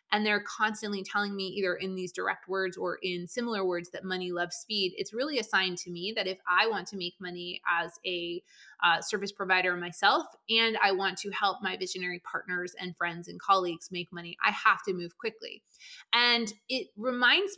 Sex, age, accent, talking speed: female, 20-39, American, 200 wpm